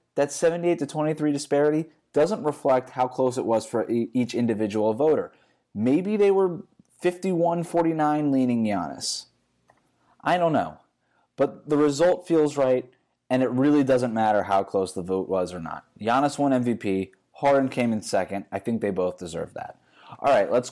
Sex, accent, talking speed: male, American, 160 wpm